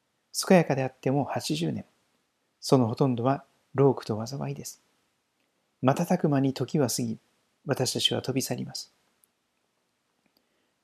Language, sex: Japanese, male